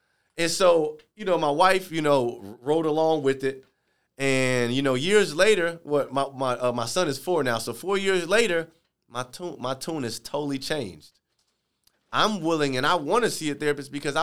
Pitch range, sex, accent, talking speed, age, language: 125-165 Hz, male, American, 205 wpm, 30-49, English